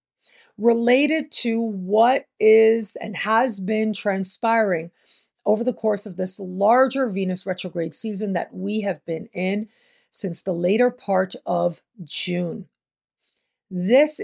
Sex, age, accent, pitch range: female, 50-69, American, 195-235 Hz